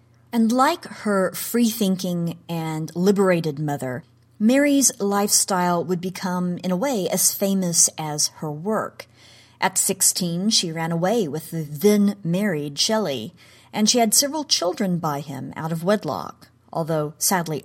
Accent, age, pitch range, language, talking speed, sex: American, 40-59, 150-195 Hz, English, 135 wpm, female